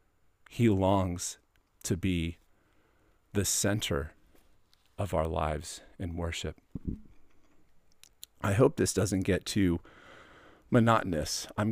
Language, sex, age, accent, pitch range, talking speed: English, male, 40-59, American, 85-115 Hz, 95 wpm